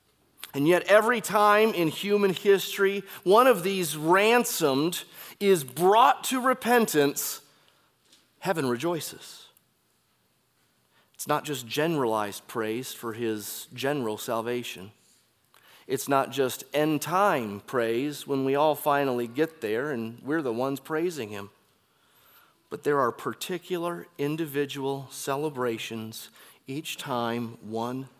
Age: 30-49